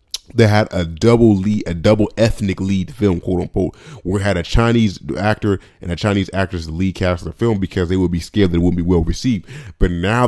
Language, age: English, 30-49